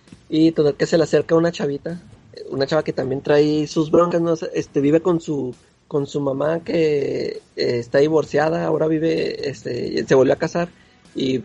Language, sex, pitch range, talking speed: Spanish, male, 135-165 Hz, 190 wpm